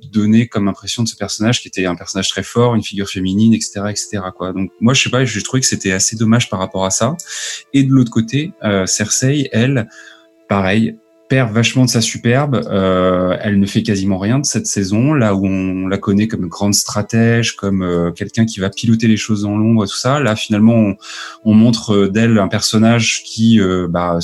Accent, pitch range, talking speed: French, 95-115 Hz, 220 wpm